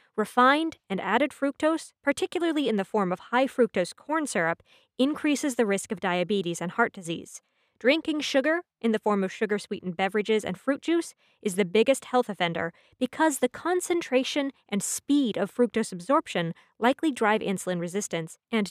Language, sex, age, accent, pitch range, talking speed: English, female, 20-39, American, 195-270 Hz, 155 wpm